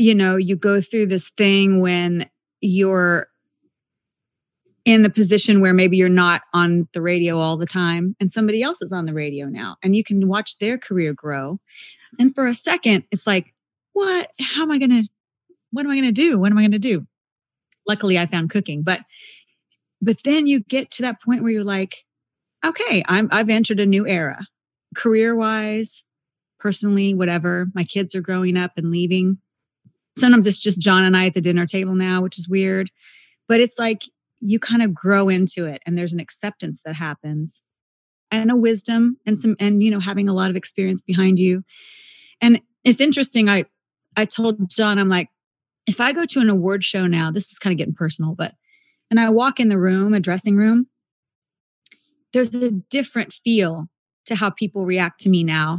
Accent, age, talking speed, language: American, 30-49, 190 wpm, English